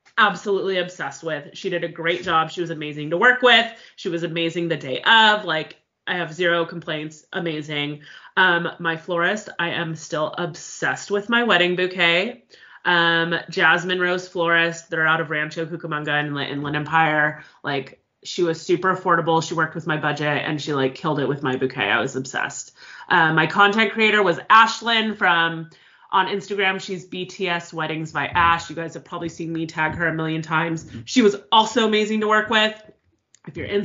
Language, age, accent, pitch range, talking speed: English, 30-49, American, 155-190 Hz, 185 wpm